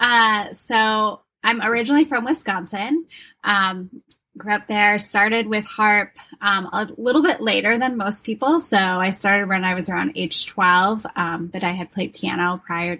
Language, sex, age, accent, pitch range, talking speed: English, female, 10-29, American, 180-215 Hz, 170 wpm